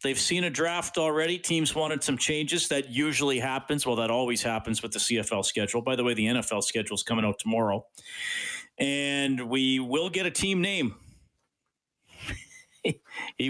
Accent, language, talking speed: American, English, 170 wpm